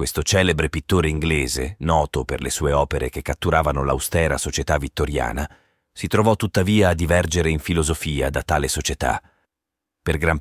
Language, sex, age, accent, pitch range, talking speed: Italian, male, 40-59, native, 80-105 Hz, 150 wpm